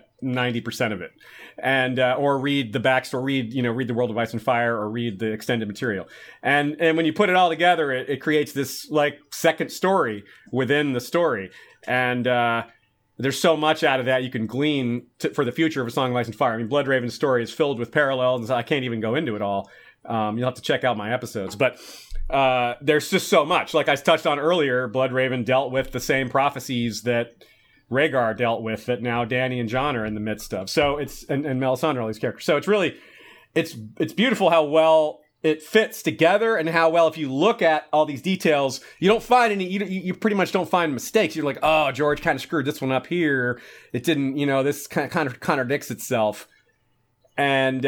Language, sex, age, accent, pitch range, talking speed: English, male, 40-59, American, 125-155 Hz, 230 wpm